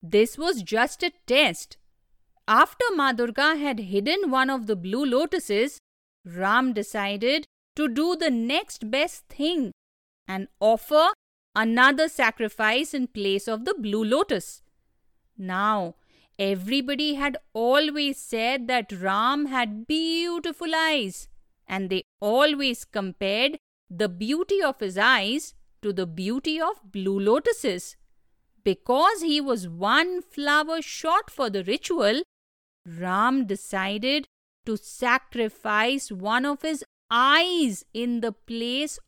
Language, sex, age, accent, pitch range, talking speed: English, female, 50-69, Indian, 210-300 Hz, 120 wpm